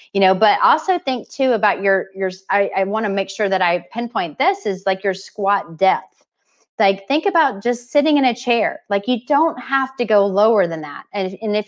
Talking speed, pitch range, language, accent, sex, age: 220 wpm, 190-240 Hz, English, American, female, 30-49